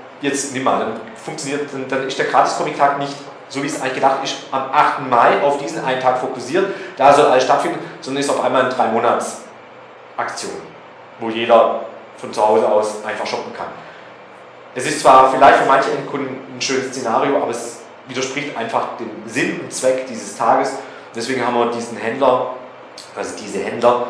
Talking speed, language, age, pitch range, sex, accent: 185 wpm, German, 40-59, 115-135 Hz, male, German